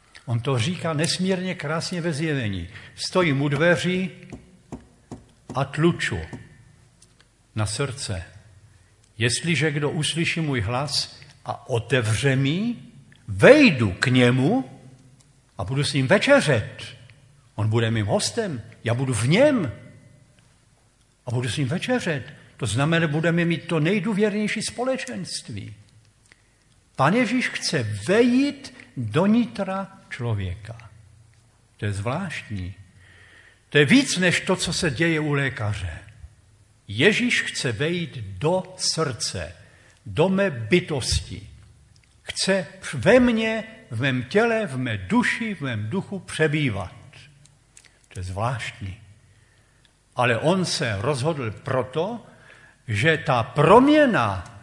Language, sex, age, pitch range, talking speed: Slovak, male, 70-89, 115-170 Hz, 110 wpm